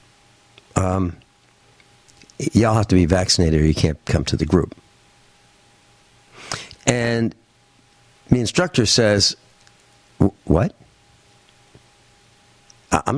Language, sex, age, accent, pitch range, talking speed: English, male, 60-79, American, 100-135 Hz, 85 wpm